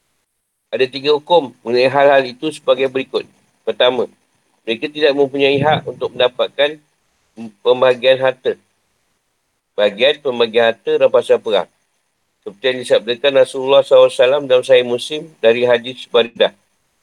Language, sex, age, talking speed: Malay, male, 50-69, 115 wpm